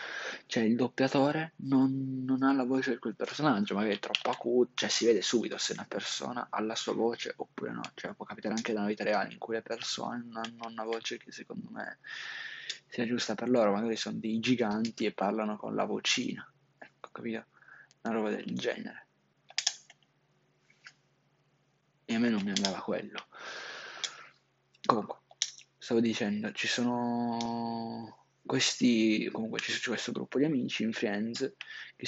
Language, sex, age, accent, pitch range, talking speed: Italian, male, 20-39, native, 110-130 Hz, 165 wpm